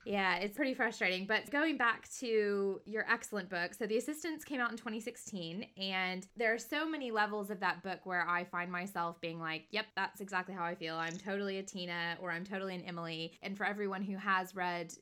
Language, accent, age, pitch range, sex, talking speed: English, American, 20-39, 180-215 Hz, female, 215 wpm